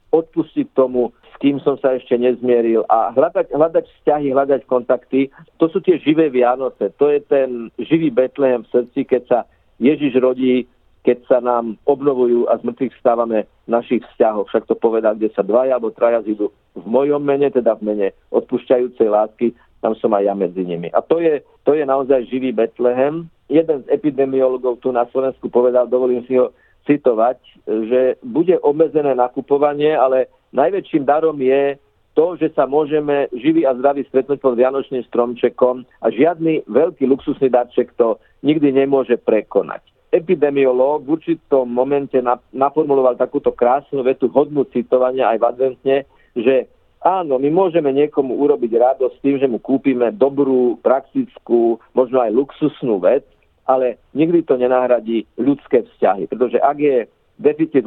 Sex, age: male, 50-69